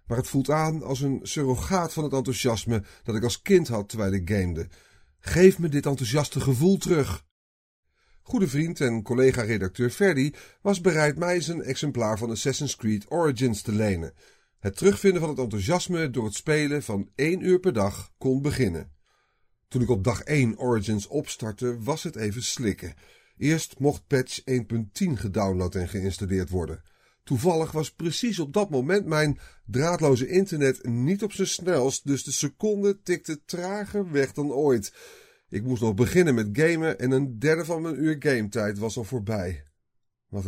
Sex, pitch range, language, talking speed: male, 110-155 Hz, Dutch, 170 wpm